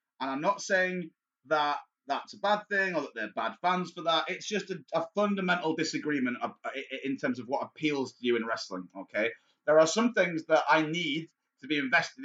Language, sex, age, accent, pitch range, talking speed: English, male, 30-49, British, 140-190 Hz, 210 wpm